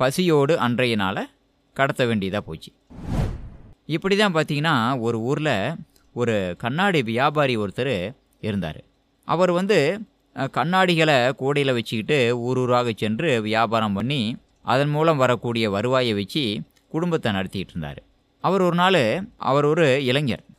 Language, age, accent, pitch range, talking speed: Tamil, 20-39, native, 115-155 Hz, 115 wpm